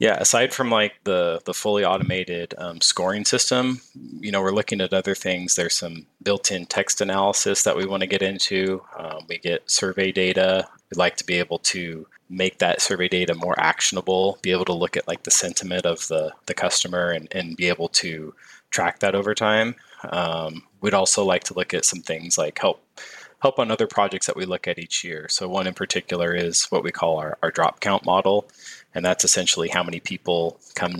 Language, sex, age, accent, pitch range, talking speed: English, male, 20-39, American, 85-100 Hz, 210 wpm